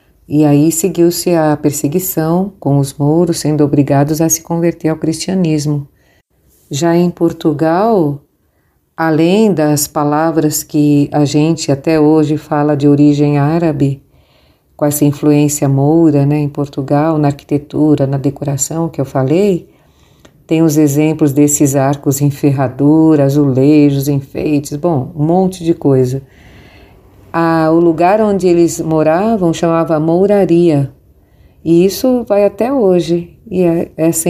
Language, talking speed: Portuguese, 130 wpm